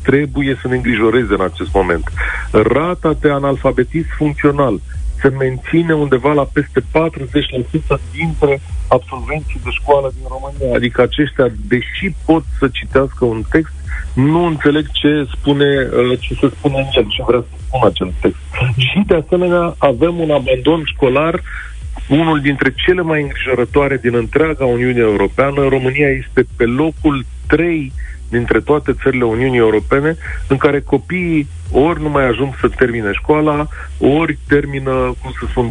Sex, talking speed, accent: male, 145 wpm, native